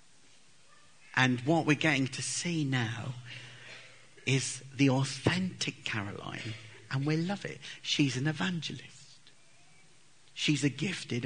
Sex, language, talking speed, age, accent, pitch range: male, English, 110 wpm, 50-69, British, 120-145 Hz